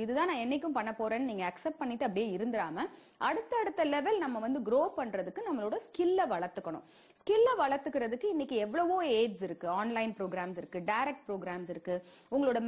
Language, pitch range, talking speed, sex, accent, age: English, 210-345 Hz, 150 wpm, female, Indian, 30-49